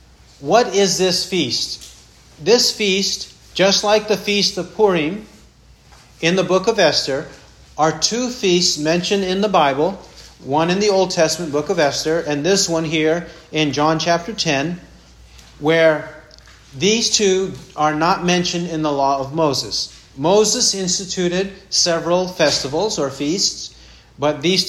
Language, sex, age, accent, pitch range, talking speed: English, male, 40-59, American, 150-195 Hz, 145 wpm